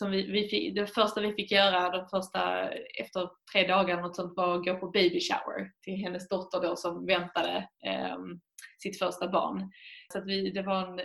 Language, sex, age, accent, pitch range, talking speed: Swedish, female, 20-39, native, 180-220 Hz, 195 wpm